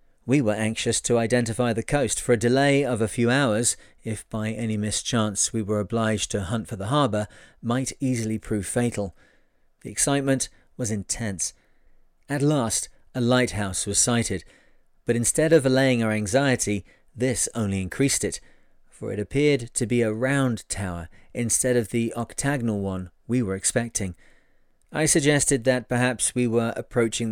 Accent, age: British, 40-59